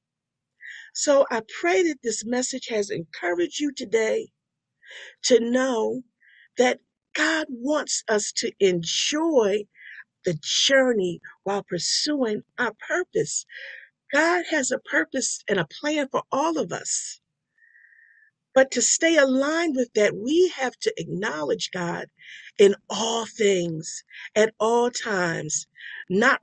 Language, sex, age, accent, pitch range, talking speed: English, female, 50-69, American, 215-320 Hz, 120 wpm